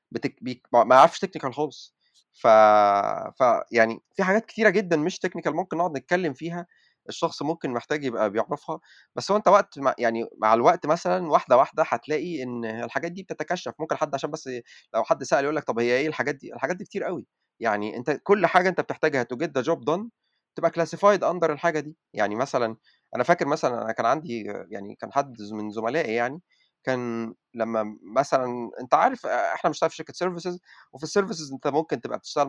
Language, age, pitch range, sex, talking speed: Arabic, 30-49, 125-175 Hz, male, 190 wpm